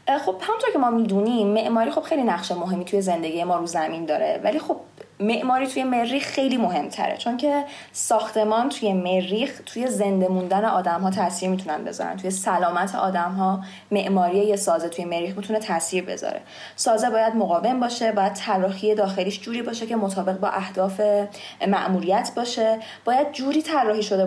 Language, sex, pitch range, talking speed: Persian, female, 185-235 Hz, 165 wpm